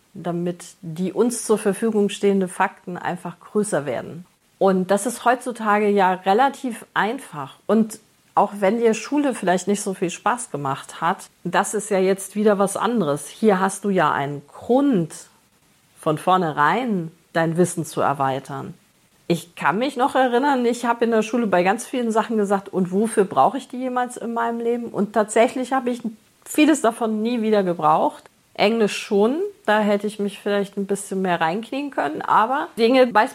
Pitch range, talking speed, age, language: 185-230 Hz, 175 wpm, 40-59, German